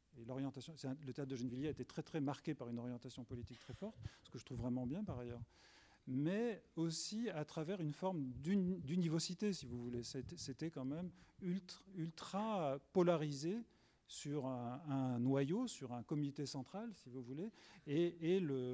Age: 40-59